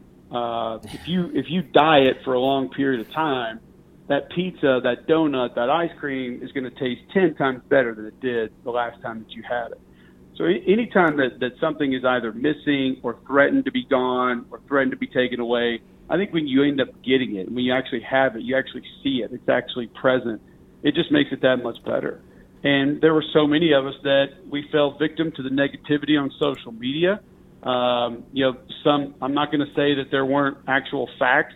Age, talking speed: 50-69, 215 wpm